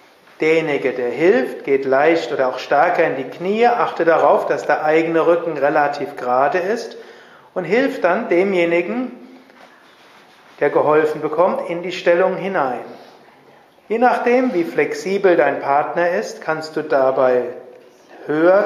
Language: German